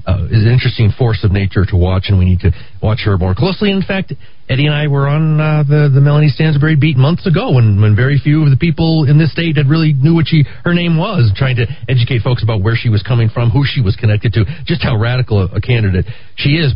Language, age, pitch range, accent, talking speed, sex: English, 40-59, 110-145 Hz, American, 260 wpm, male